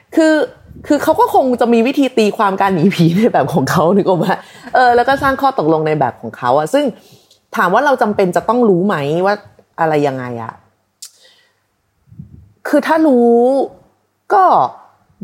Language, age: Thai, 30-49